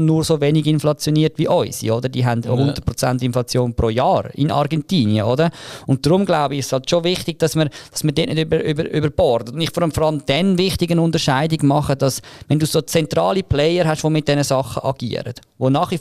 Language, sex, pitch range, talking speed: German, male, 125-160 Hz, 215 wpm